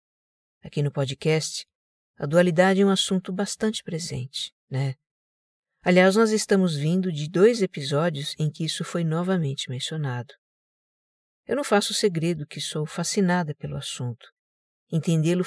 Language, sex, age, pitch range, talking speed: Portuguese, female, 50-69, 145-190 Hz, 130 wpm